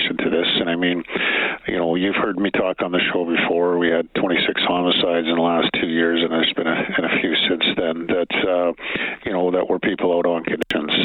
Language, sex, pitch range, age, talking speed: English, male, 80-90 Hz, 50-69, 230 wpm